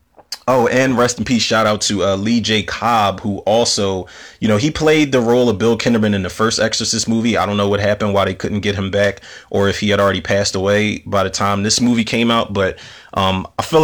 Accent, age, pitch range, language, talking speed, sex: American, 20-39, 100-115 Hz, English, 245 wpm, male